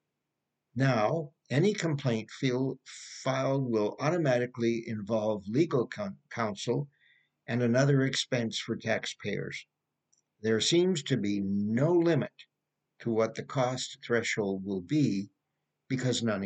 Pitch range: 110-140 Hz